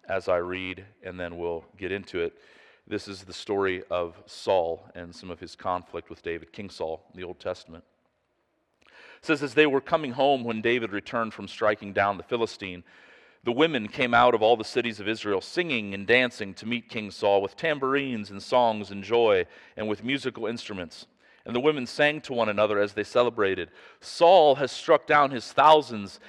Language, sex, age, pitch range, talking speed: English, male, 40-59, 95-130 Hz, 195 wpm